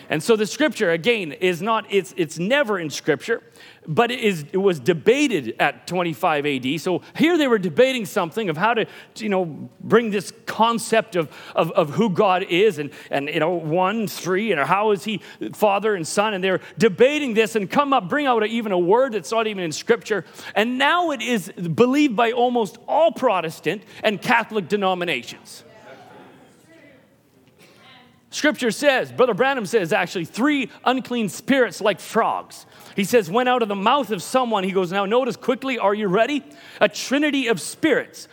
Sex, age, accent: male, 40-59, American